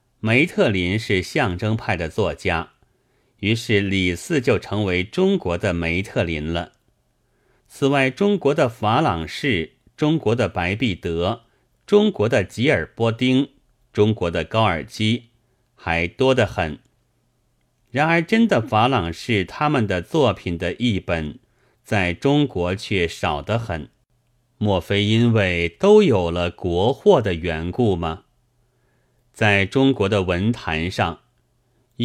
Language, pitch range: Chinese, 90-125 Hz